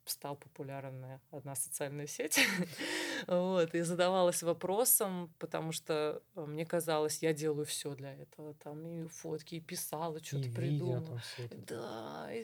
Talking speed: 125 wpm